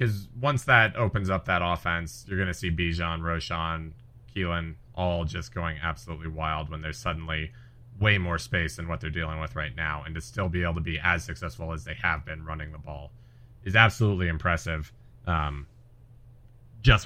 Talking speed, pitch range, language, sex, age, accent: 185 wpm, 85-120 Hz, English, male, 30-49, American